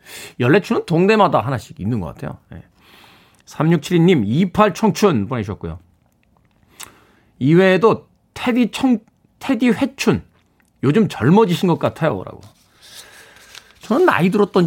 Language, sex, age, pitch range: Korean, male, 40-59, 125-195 Hz